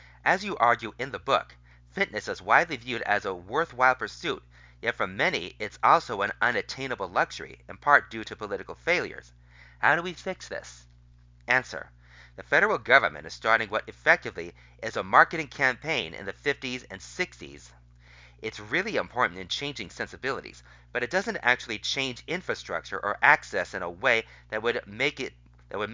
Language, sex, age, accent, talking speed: English, male, 40-59, American, 160 wpm